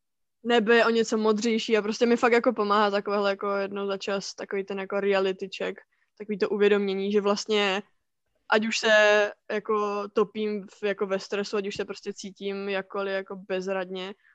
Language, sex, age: Czech, female, 20-39